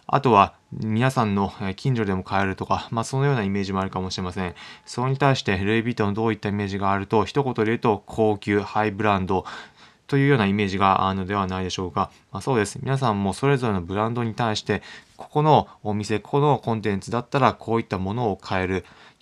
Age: 20-39